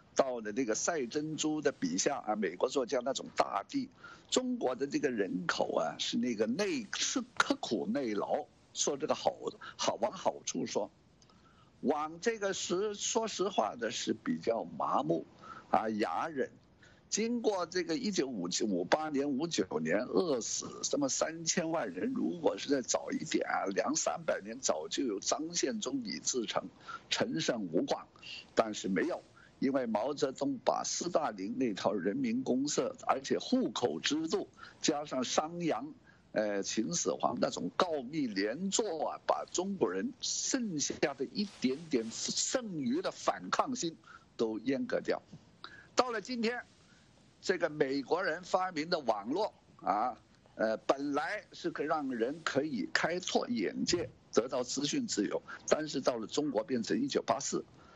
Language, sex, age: English, male, 50-69